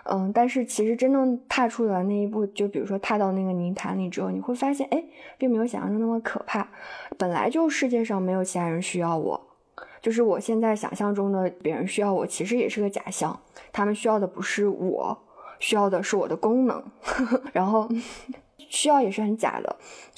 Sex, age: female, 20-39